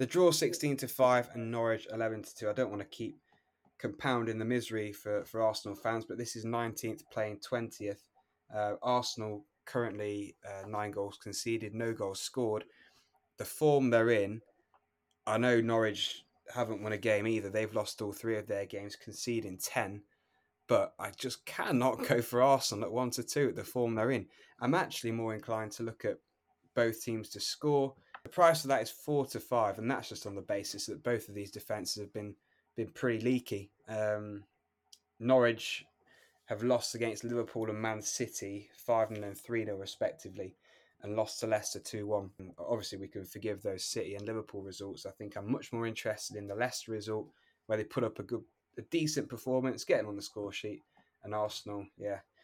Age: 20-39